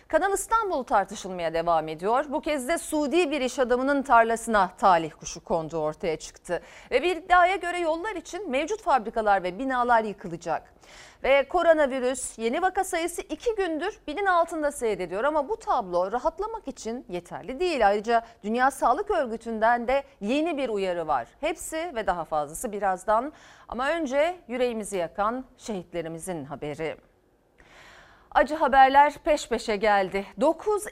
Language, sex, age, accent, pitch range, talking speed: Turkish, female, 40-59, native, 205-315 Hz, 140 wpm